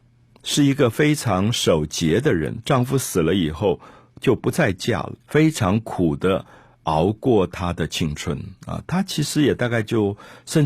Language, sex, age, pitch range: Chinese, male, 50-69, 95-135 Hz